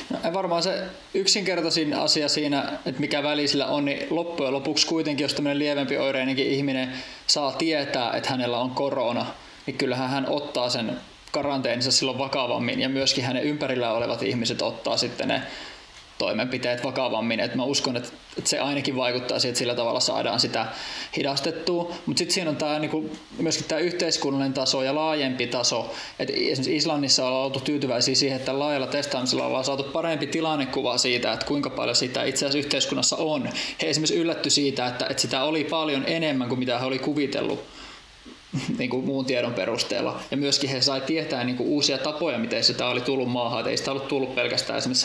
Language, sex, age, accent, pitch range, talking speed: Finnish, male, 20-39, native, 130-155 Hz, 175 wpm